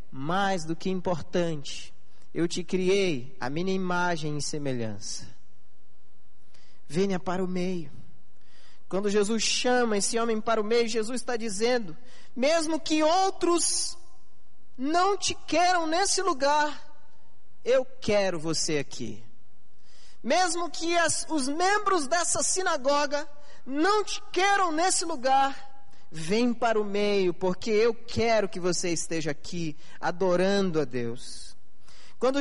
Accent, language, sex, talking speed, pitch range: Brazilian, Portuguese, male, 120 wpm, 180-290 Hz